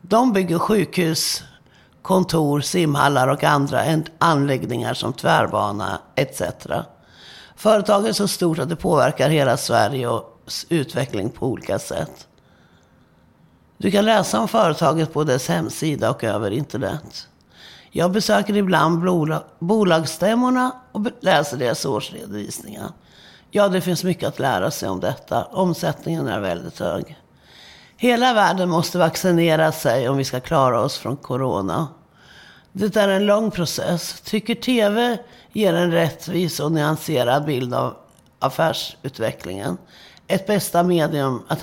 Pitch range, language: 150-200 Hz, Swedish